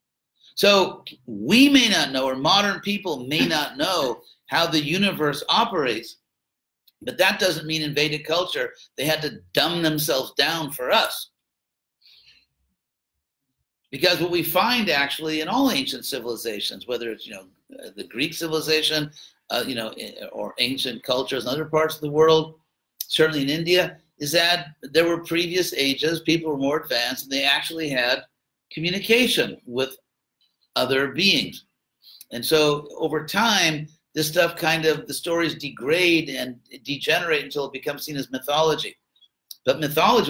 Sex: male